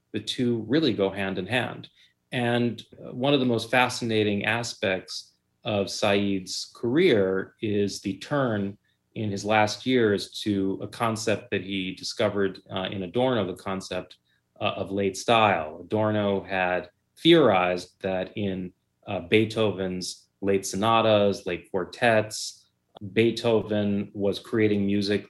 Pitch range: 95-115 Hz